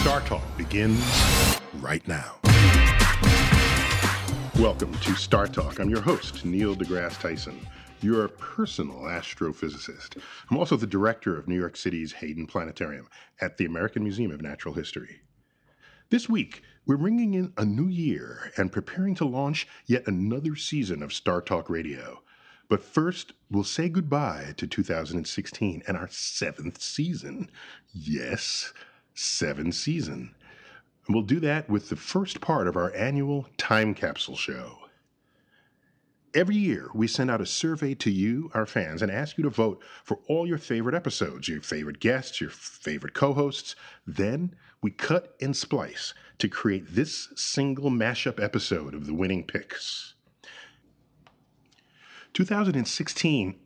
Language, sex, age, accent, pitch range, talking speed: English, male, 40-59, American, 95-145 Hz, 140 wpm